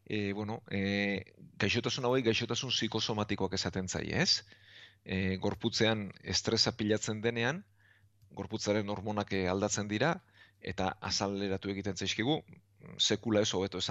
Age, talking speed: 40-59, 110 wpm